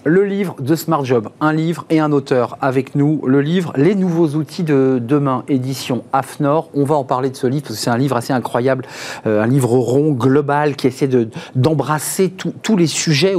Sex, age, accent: male, 40-59, French